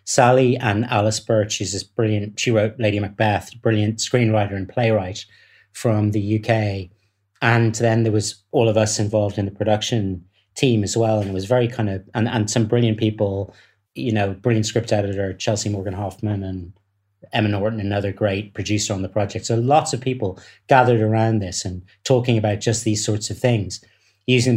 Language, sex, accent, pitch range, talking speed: English, male, British, 100-120 Hz, 185 wpm